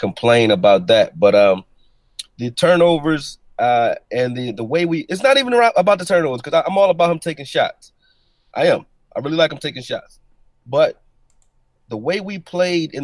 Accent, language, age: American, English, 30-49